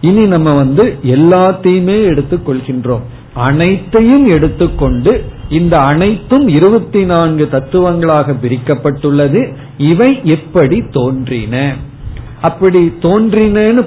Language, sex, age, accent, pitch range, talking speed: Tamil, male, 50-69, native, 130-180 Hz, 75 wpm